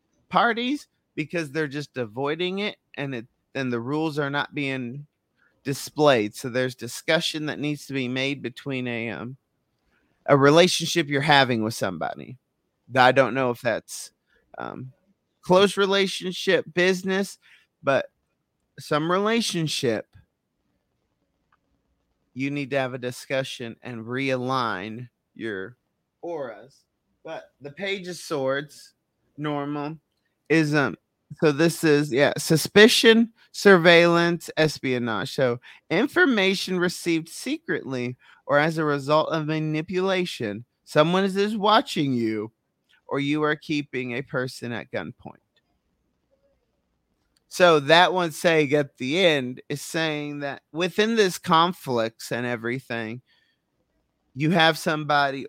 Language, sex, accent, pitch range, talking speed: English, male, American, 130-170 Hz, 115 wpm